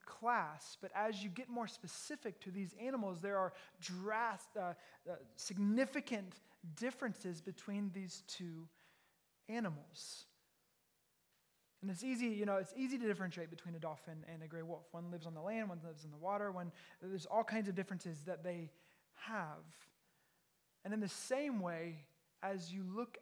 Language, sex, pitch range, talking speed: English, male, 180-230 Hz, 160 wpm